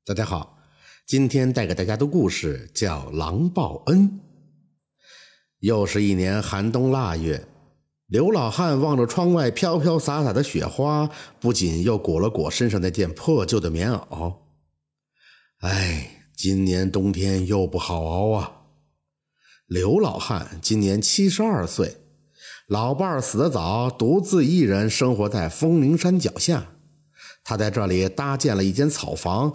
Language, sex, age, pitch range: Chinese, male, 50-69, 95-155 Hz